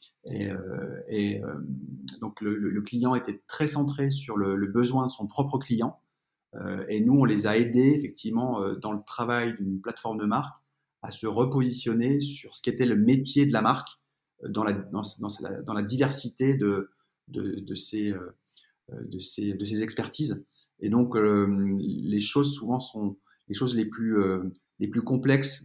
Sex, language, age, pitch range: male, French, 30-49, 105-120 Hz